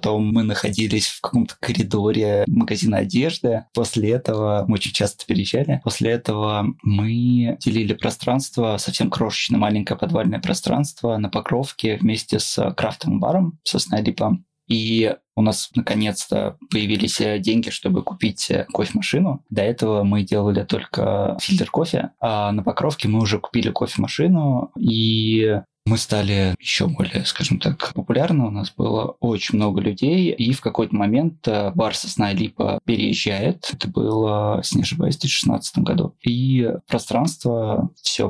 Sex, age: male, 20-39